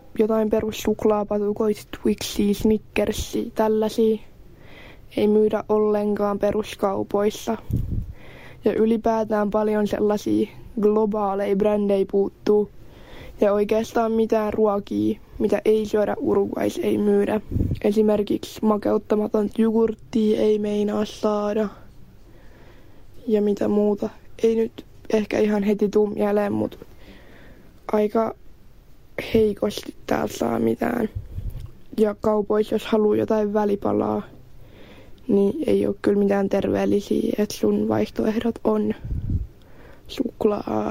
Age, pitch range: 20-39, 130-220 Hz